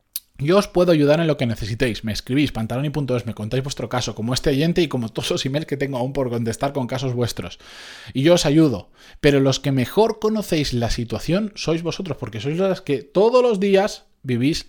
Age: 20-39